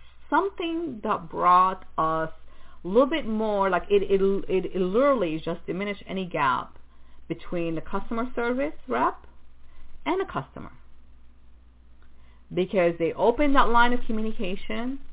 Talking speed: 130 wpm